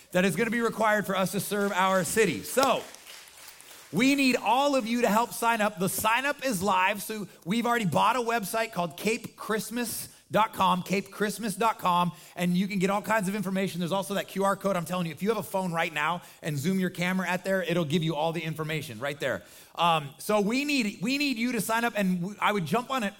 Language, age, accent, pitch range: English, 30-49, American, 175-220 Hz